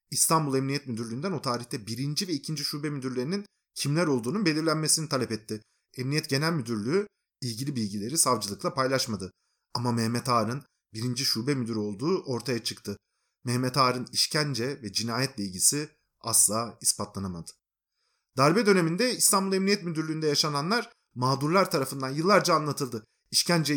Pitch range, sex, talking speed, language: 120-165 Hz, male, 125 wpm, Turkish